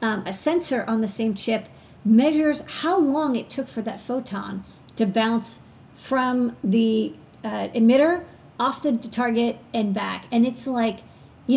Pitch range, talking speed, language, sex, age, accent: 215-255 Hz, 155 wpm, English, female, 40-59, American